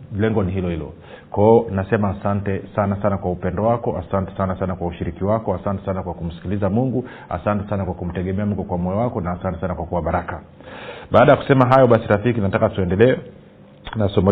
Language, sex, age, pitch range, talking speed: Swahili, male, 40-59, 95-115 Hz, 195 wpm